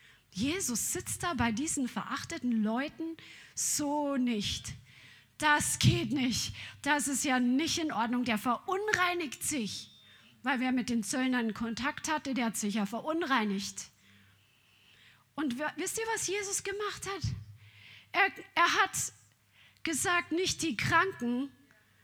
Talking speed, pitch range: 130 wpm, 235-325 Hz